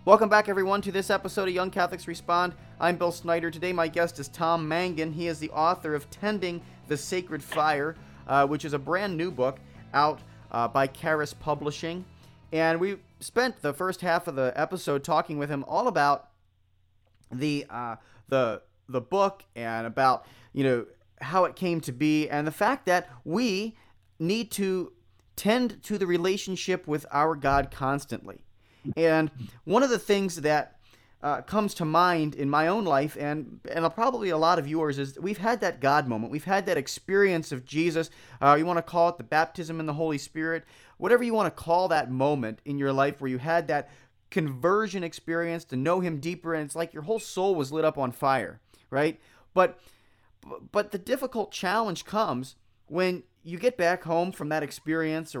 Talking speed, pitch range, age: 185 wpm, 140-180 Hz, 30-49